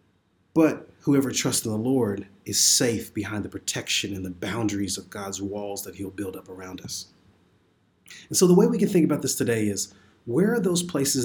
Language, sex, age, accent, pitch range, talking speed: English, male, 40-59, American, 100-135 Hz, 205 wpm